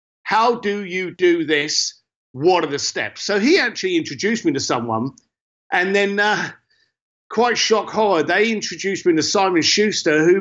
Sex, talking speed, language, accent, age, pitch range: male, 165 wpm, English, British, 50-69, 155-230 Hz